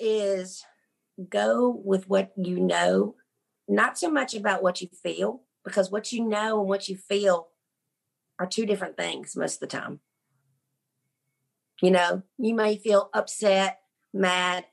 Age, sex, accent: 40-59, female, American